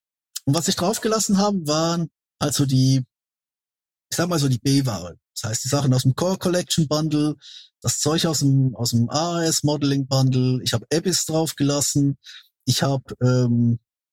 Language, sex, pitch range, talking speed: German, male, 130-170 Hz, 160 wpm